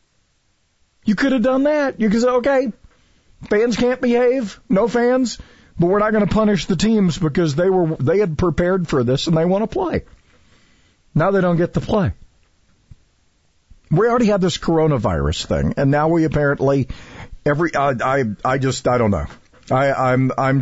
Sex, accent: male, American